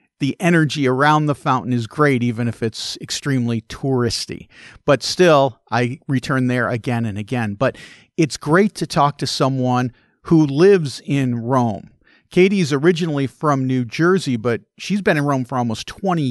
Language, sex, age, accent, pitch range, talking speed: English, male, 40-59, American, 120-155 Hz, 160 wpm